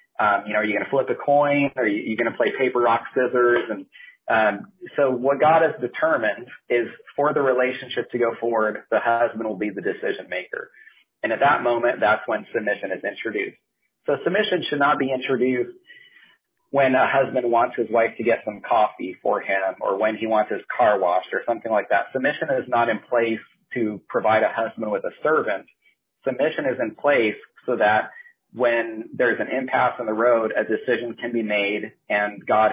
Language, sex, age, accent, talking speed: English, male, 40-59, American, 200 wpm